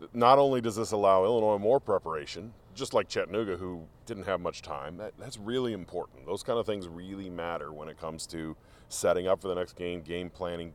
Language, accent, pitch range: English, American, 90-120 Hz